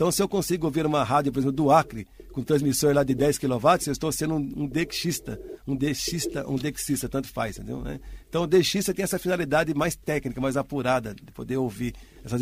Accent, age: Brazilian, 50-69